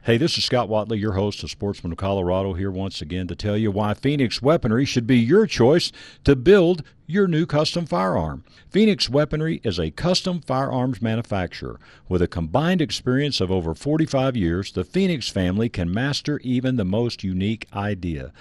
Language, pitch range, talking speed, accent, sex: English, 100-145 Hz, 180 wpm, American, male